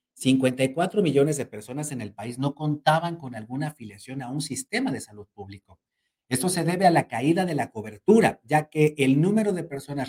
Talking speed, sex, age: 195 wpm, male, 50-69